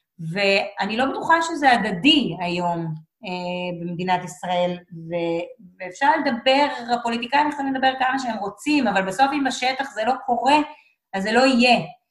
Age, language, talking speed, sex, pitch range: 30-49, Hebrew, 145 wpm, female, 190-275 Hz